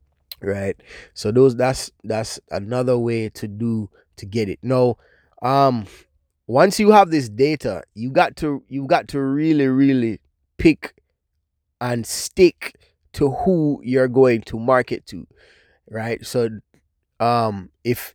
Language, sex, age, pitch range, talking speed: English, male, 20-39, 105-135 Hz, 135 wpm